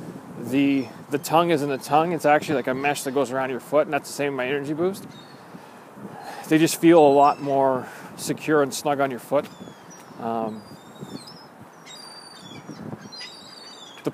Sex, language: male, English